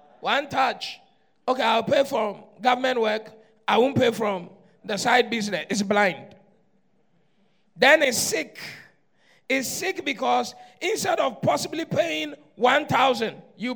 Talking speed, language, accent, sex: 130 wpm, English, Nigerian, male